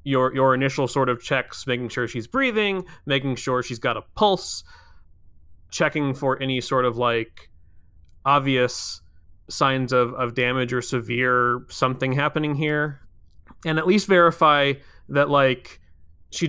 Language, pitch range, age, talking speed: English, 115-145 Hz, 30-49, 140 wpm